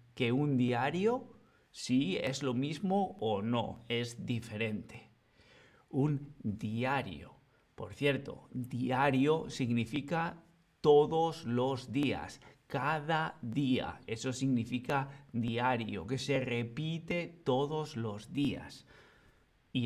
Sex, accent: male, Spanish